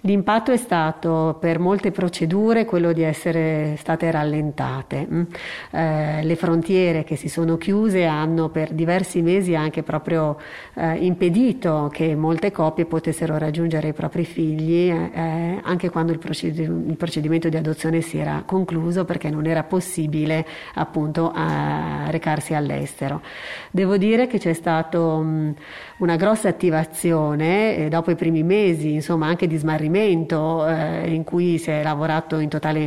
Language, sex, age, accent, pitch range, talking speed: Italian, female, 40-59, native, 155-170 Hz, 140 wpm